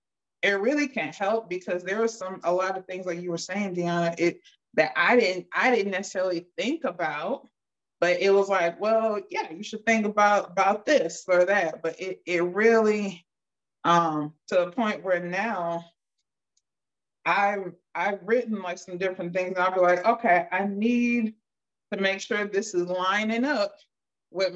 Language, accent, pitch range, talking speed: English, American, 175-215 Hz, 175 wpm